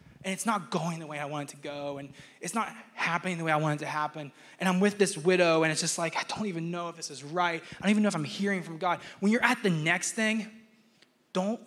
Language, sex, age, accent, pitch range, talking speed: English, male, 20-39, American, 150-195 Hz, 285 wpm